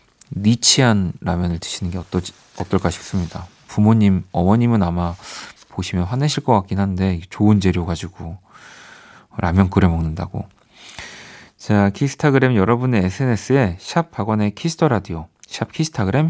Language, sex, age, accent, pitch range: Korean, male, 40-59, native, 95-130 Hz